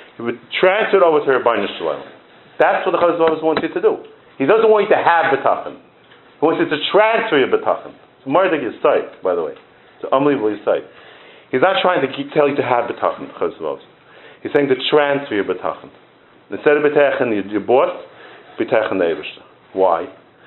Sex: male